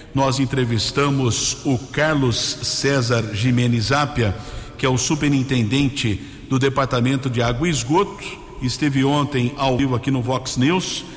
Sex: male